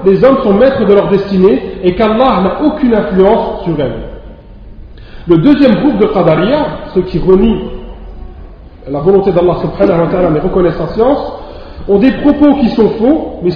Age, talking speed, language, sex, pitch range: 40-59, 170 wpm, French, male, 175-235 Hz